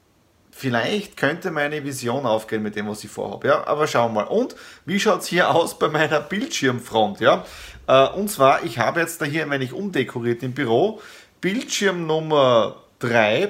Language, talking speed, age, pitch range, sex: German, 180 wpm, 30-49, 125-170 Hz, male